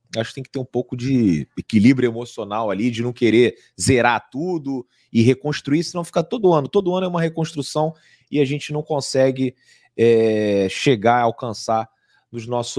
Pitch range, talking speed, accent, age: 125-175 Hz, 175 wpm, Brazilian, 30-49